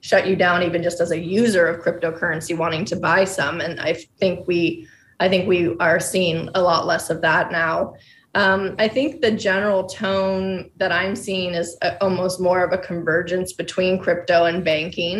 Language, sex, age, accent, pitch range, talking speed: English, female, 20-39, American, 170-195 Hz, 190 wpm